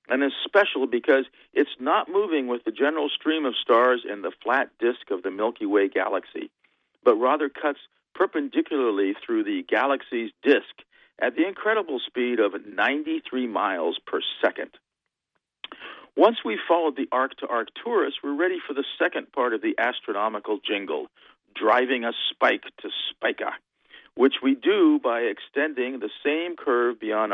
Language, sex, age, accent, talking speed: English, male, 50-69, American, 155 wpm